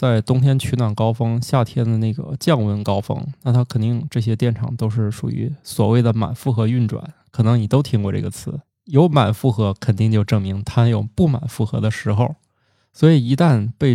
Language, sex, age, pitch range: Chinese, male, 20-39, 110-140 Hz